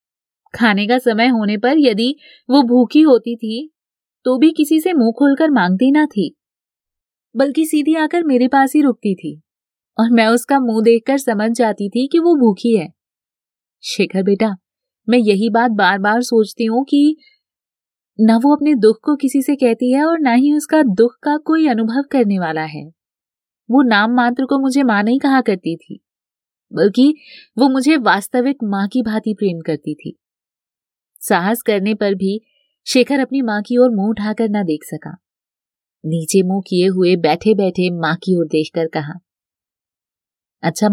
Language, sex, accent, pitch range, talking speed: Hindi, female, native, 195-265 Hz, 170 wpm